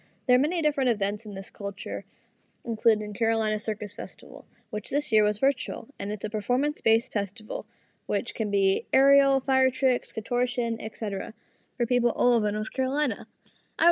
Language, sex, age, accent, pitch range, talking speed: English, female, 10-29, American, 215-255 Hz, 160 wpm